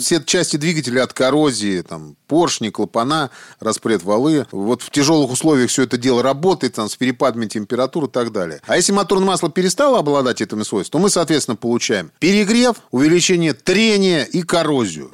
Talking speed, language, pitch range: 165 wpm, Russian, 125-175 Hz